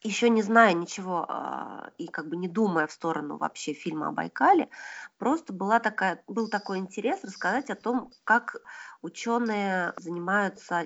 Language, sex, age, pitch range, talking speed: Russian, female, 20-39, 170-220 Hz, 150 wpm